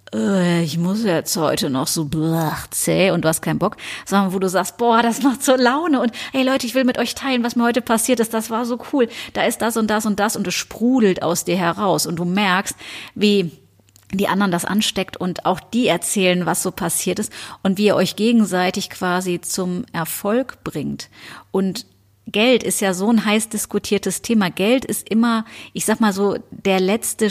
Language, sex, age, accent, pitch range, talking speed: German, female, 30-49, German, 175-225 Hz, 205 wpm